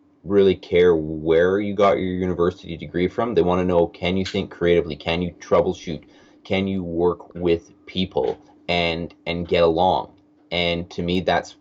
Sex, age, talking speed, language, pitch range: male, 30-49, 170 wpm, English, 85-100 Hz